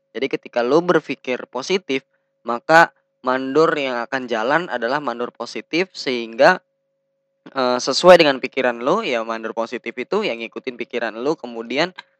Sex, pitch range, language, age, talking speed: female, 120-150 Hz, Indonesian, 10-29, 140 wpm